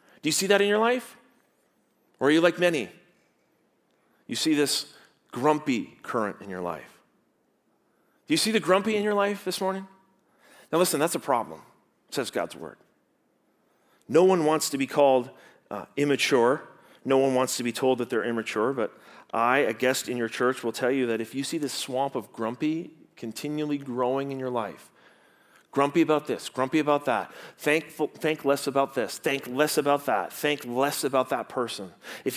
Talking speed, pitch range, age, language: 185 wpm, 125-160 Hz, 40-59, English